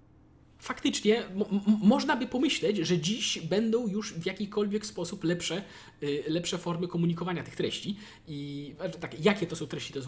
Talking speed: 165 wpm